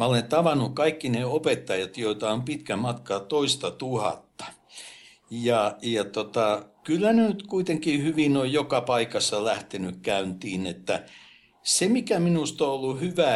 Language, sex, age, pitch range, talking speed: Finnish, male, 60-79, 110-155 Hz, 140 wpm